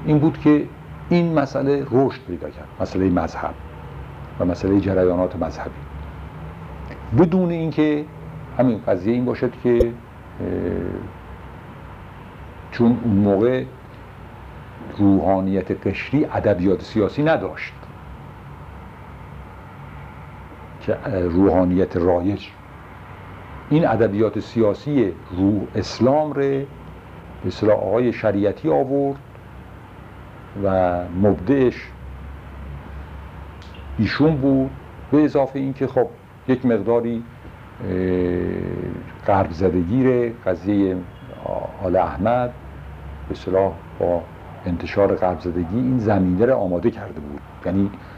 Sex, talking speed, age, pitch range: male, 85 wpm, 60-79, 90-120 Hz